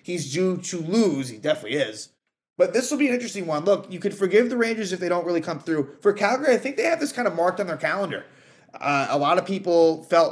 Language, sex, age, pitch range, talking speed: English, male, 30-49, 140-195 Hz, 260 wpm